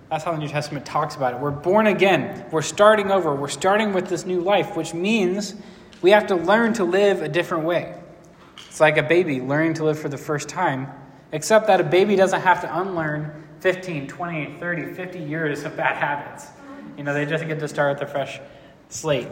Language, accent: English, American